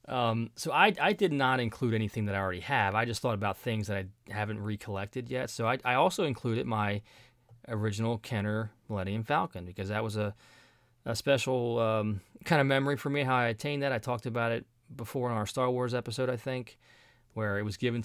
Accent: American